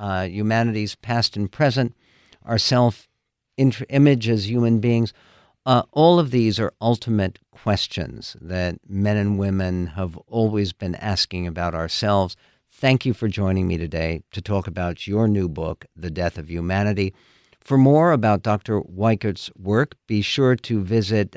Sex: male